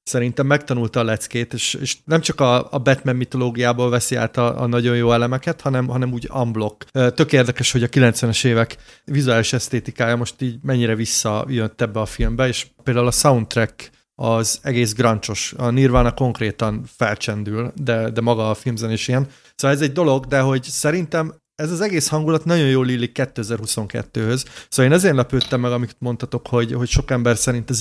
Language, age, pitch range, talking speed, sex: Hungarian, 30-49, 115-135 Hz, 180 wpm, male